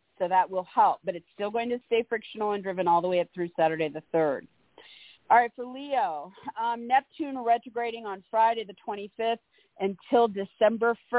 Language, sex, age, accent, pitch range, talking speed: English, female, 40-59, American, 180-230 Hz, 180 wpm